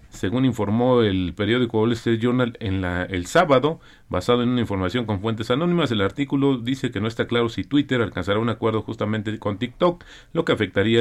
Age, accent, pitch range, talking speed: 40-59, Mexican, 100-130 Hz, 195 wpm